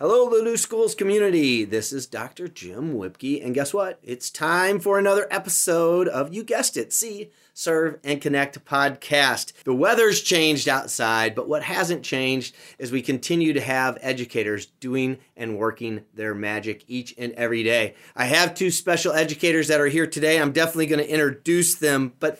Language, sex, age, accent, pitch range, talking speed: English, male, 30-49, American, 125-165 Hz, 175 wpm